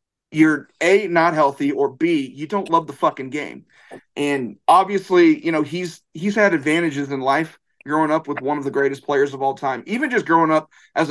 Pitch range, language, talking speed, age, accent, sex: 140-185 Hz, English, 205 wpm, 30-49, American, male